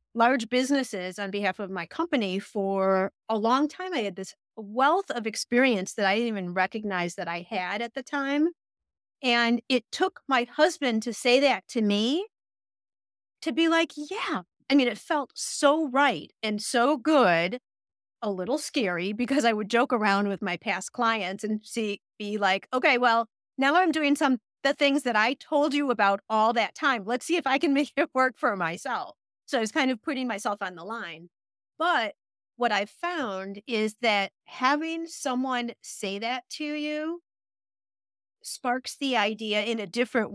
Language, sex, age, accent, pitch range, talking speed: English, female, 40-59, American, 200-280 Hz, 180 wpm